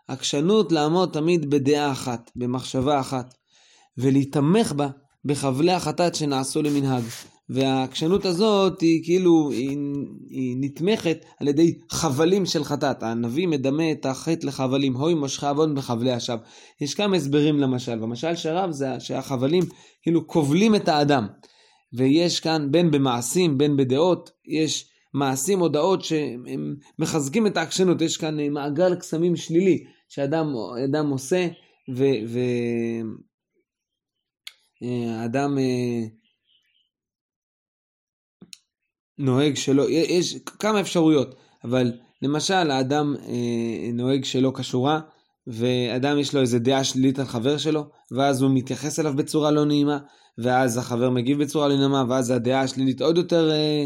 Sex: male